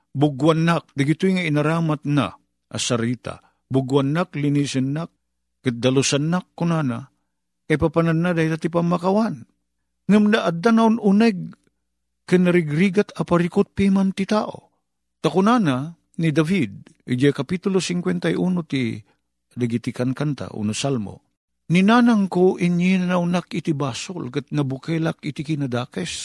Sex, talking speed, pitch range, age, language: male, 115 wpm, 130-195 Hz, 50-69, Filipino